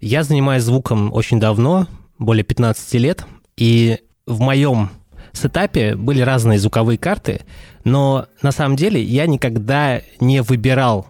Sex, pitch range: male, 110-135 Hz